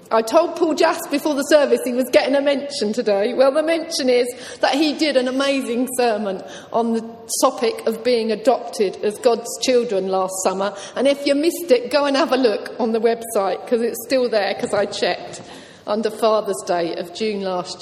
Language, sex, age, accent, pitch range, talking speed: English, female, 40-59, British, 200-255 Hz, 200 wpm